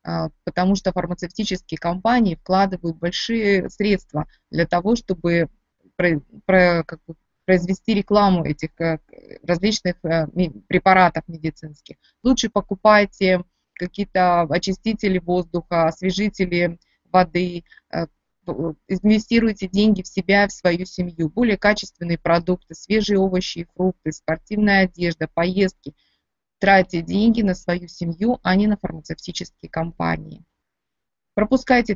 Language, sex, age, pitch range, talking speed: Russian, female, 20-39, 175-205 Hz, 95 wpm